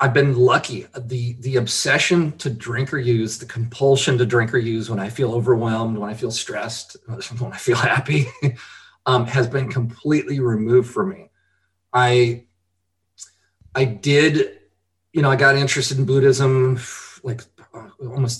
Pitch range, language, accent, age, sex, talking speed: 105-130 Hz, English, American, 40-59, male, 155 wpm